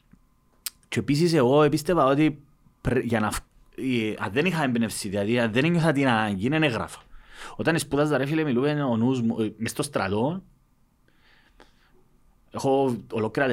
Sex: male